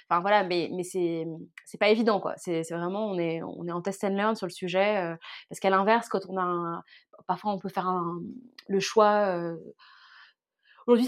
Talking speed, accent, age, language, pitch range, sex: 215 wpm, French, 20-39, French, 175-215 Hz, female